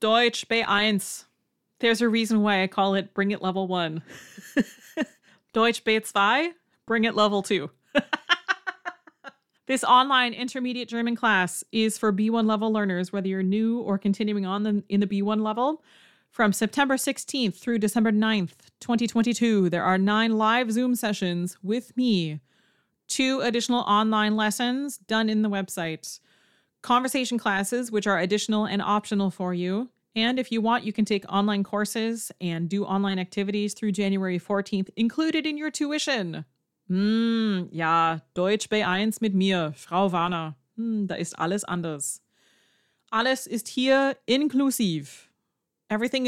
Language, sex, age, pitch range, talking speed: English, female, 30-49, 190-235 Hz, 145 wpm